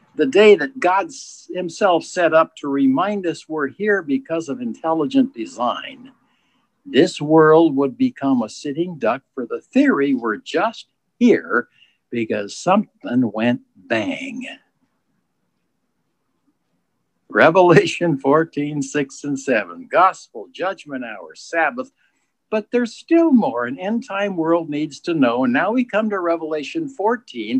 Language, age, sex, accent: English, 60-79, male, American